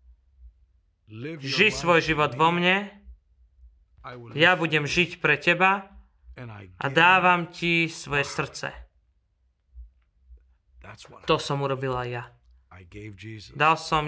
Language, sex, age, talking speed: Slovak, male, 30-49, 90 wpm